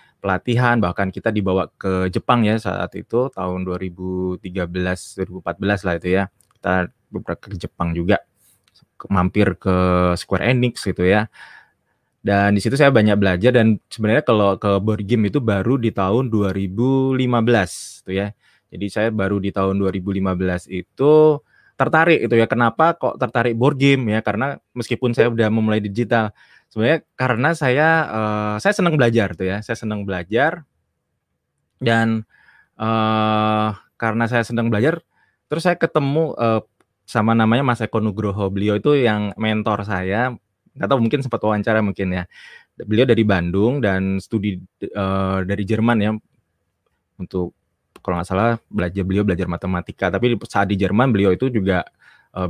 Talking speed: 150 wpm